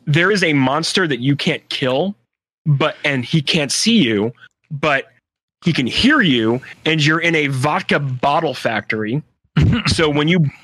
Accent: American